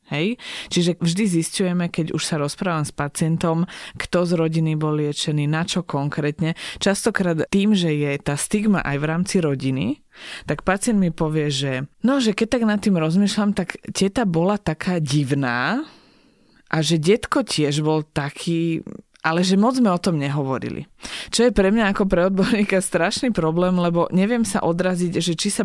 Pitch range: 155-195 Hz